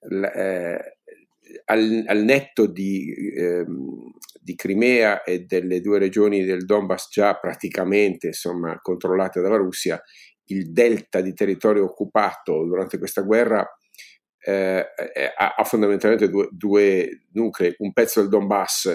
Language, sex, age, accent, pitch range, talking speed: Italian, male, 50-69, native, 90-110 Hz, 125 wpm